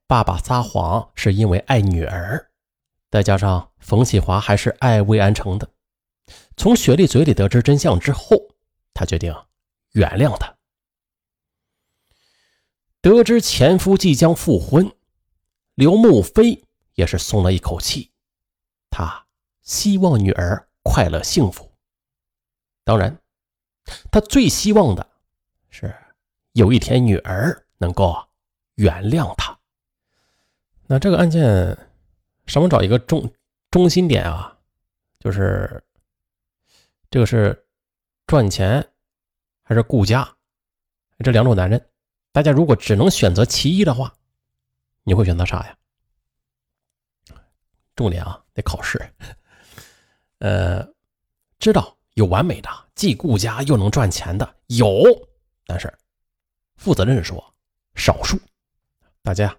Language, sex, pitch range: Chinese, male, 90-140 Hz